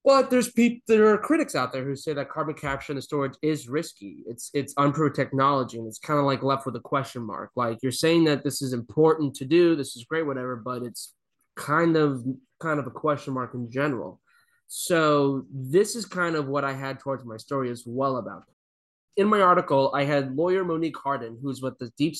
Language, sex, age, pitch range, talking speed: English, male, 20-39, 125-155 Hz, 220 wpm